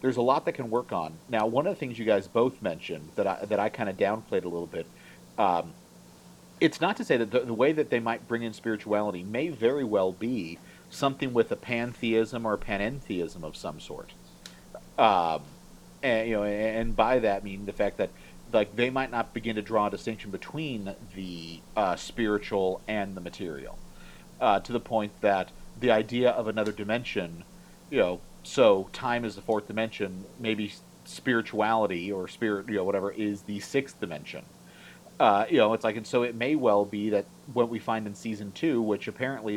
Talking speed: 195 wpm